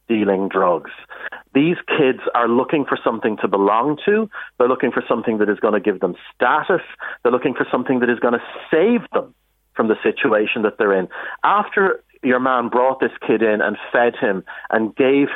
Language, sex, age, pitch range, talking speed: English, male, 40-59, 100-130 Hz, 195 wpm